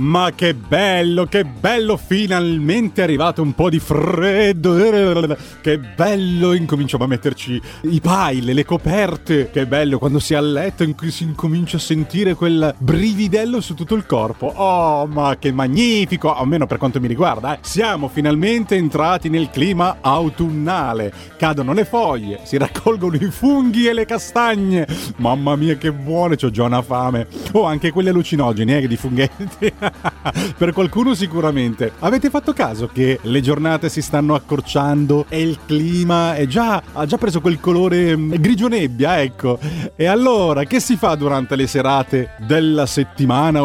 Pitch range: 145-195 Hz